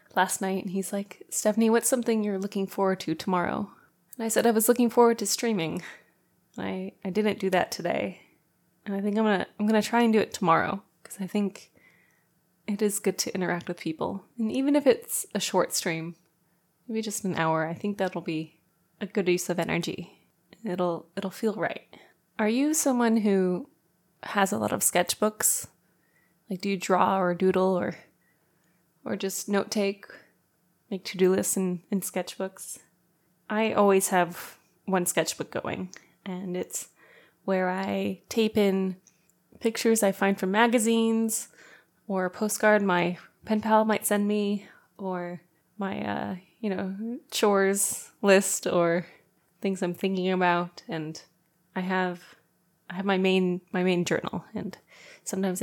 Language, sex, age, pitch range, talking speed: English, female, 20-39, 175-215 Hz, 165 wpm